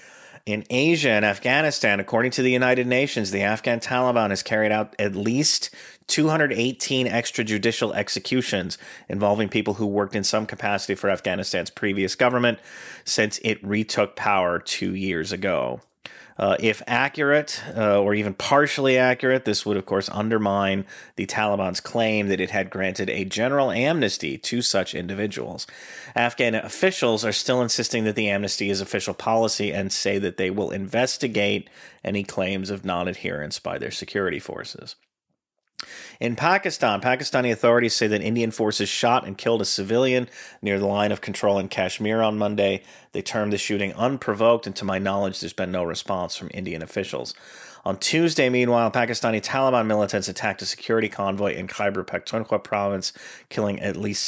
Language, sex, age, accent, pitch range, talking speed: English, male, 30-49, American, 100-120 Hz, 160 wpm